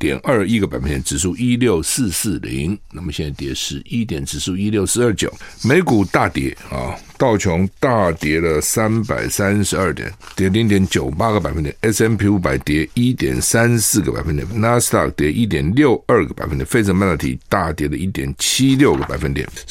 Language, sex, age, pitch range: Chinese, male, 60-79, 80-110 Hz